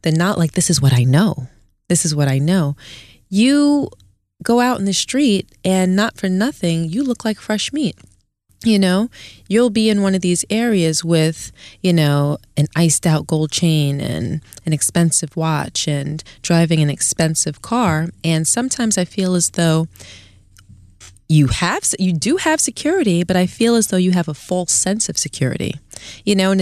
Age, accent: 20-39, American